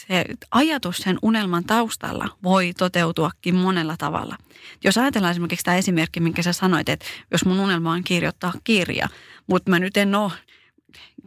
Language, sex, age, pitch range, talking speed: Finnish, female, 30-49, 180-235 Hz, 150 wpm